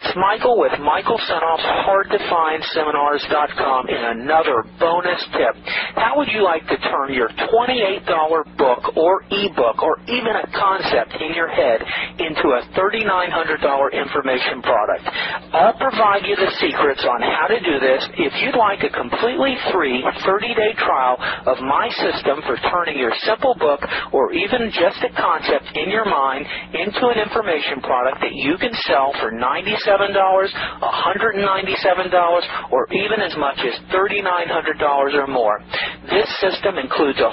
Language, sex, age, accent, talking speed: English, male, 50-69, American, 145 wpm